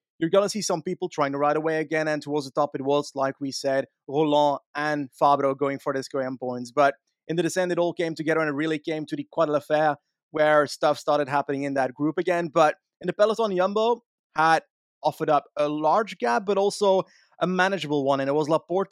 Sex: male